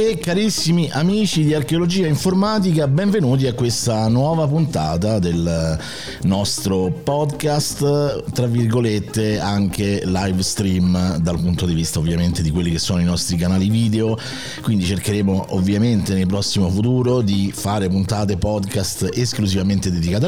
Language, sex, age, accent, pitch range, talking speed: Italian, male, 50-69, native, 90-130 Hz, 130 wpm